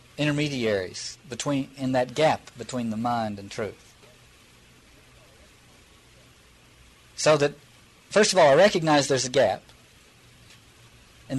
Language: English